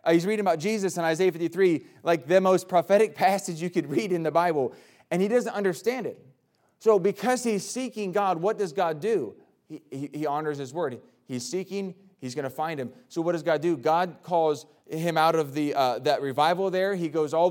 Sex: male